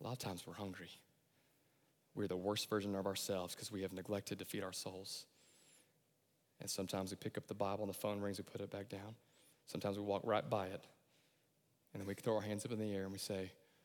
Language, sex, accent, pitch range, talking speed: English, male, American, 105-155 Hz, 240 wpm